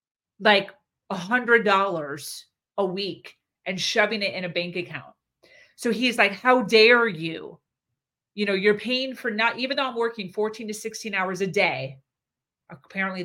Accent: American